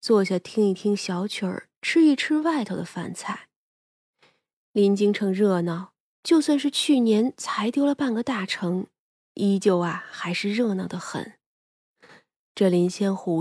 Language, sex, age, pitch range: Chinese, female, 20-39, 190-250 Hz